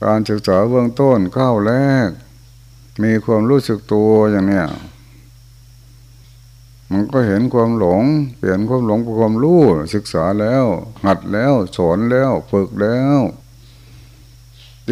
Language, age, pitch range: Thai, 60-79, 105-120 Hz